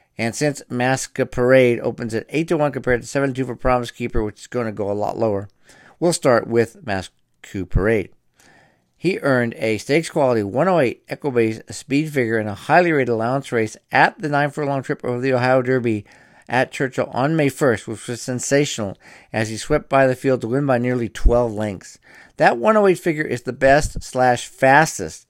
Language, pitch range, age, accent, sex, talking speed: English, 115-135 Hz, 50-69, American, male, 185 wpm